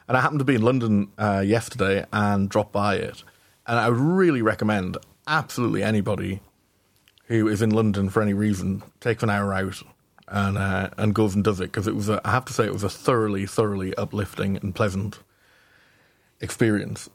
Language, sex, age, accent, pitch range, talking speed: English, male, 30-49, British, 100-110 Hz, 185 wpm